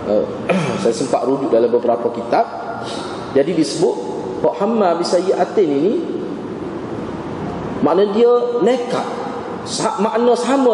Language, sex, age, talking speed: Malay, male, 30-49, 105 wpm